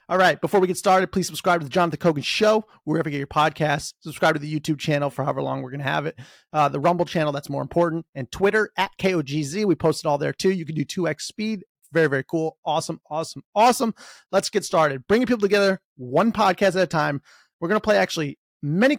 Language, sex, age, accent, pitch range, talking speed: English, male, 30-49, American, 155-215 Hz, 240 wpm